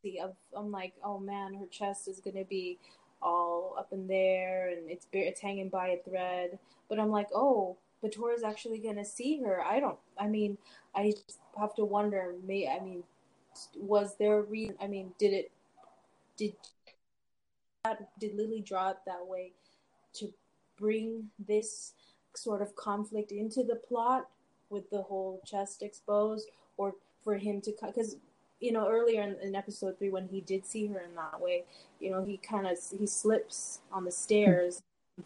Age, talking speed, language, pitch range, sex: 20-39, 175 wpm, English, 185-210 Hz, female